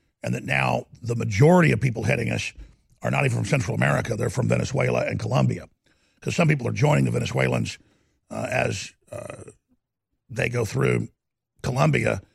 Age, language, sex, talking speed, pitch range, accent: 50-69, English, male, 165 wpm, 105-125 Hz, American